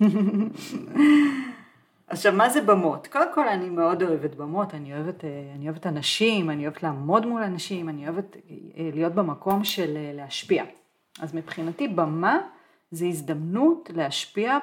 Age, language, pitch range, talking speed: 40-59, Hebrew, 155-200 Hz, 130 wpm